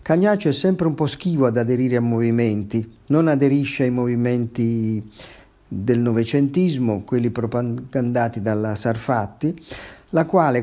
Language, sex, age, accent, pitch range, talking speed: Italian, male, 50-69, native, 115-145 Hz, 125 wpm